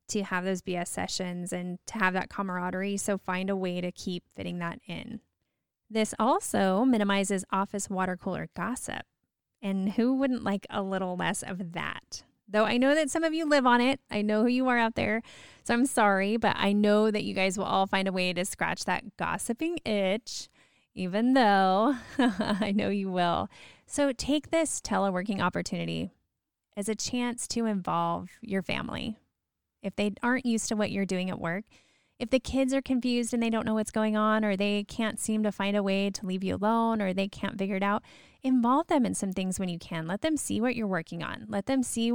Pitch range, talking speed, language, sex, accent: 190-235 Hz, 210 wpm, English, female, American